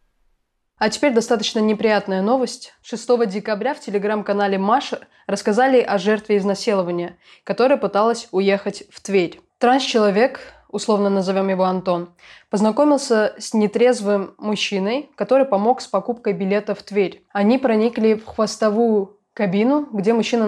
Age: 20-39